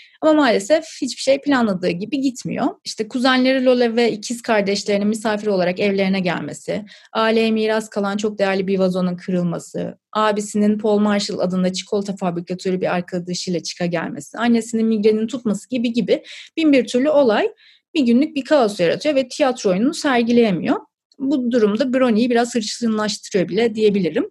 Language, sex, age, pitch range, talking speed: Turkish, female, 30-49, 210-275 Hz, 145 wpm